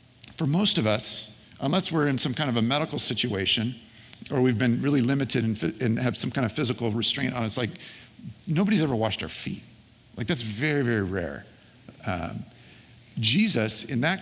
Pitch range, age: 110-135 Hz, 50-69